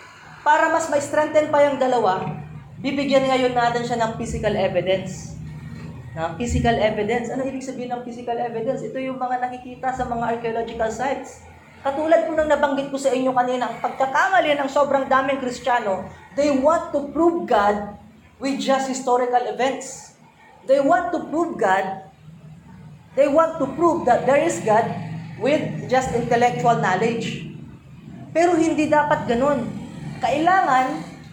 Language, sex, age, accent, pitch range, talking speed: Filipino, female, 20-39, native, 205-275 Hz, 145 wpm